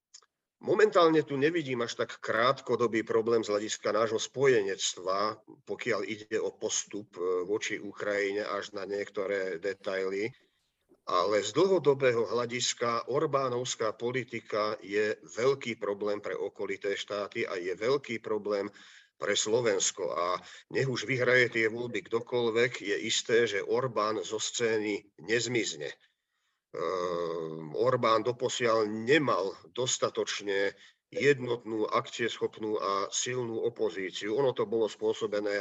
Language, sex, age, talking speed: Slovak, male, 50-69, 110 wpm